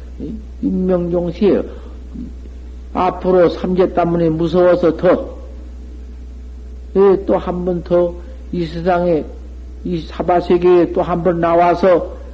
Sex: male